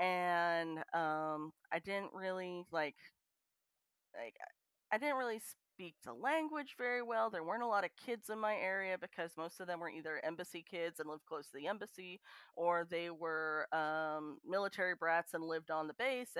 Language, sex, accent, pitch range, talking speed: English, female, American, 165-210 Hz, 180 wpm